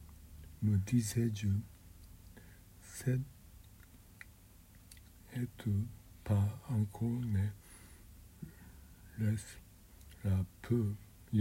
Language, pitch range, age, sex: Japanese, 95-105 Hz, 60-79, male